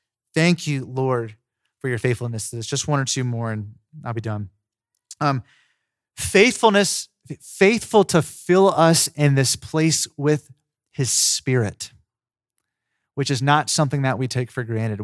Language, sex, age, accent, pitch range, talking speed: English, male, 30-49, American, 115-150 Hz, 150 wpm